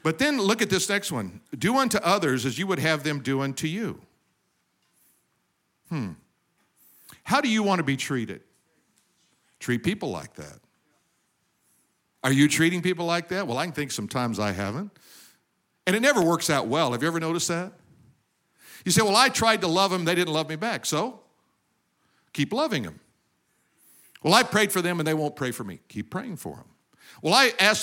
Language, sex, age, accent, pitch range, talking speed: English, male, 50-69, American, 135-185 Hz, 190 wpm